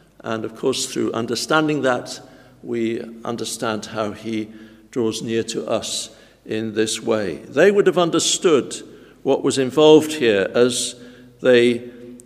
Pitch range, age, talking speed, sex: 120-150 Hz, 60-79, 130 wpm, male